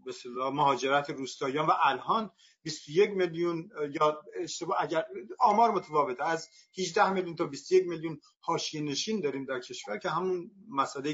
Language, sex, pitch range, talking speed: Persian, male, 155-215 Hz, 130 wpm